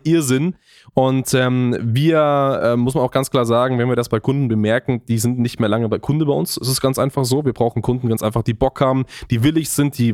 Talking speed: 255 wpm